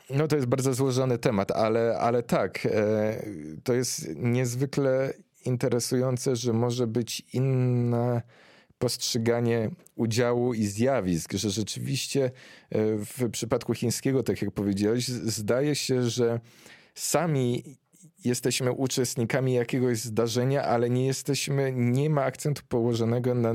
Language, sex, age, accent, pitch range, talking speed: Polish, male, 40-59, native, 110-130 Hz, 115 wpm